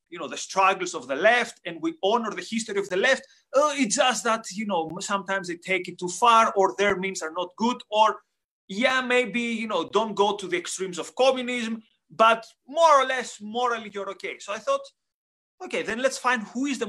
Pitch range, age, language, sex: 180-240 Hz, 30-49, English, male